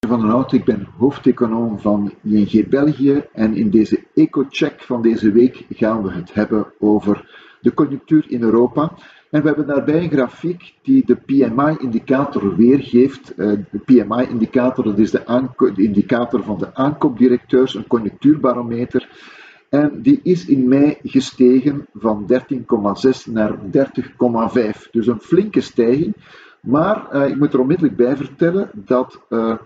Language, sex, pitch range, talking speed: Dutch, male, 115-140 Hz, 140 wpm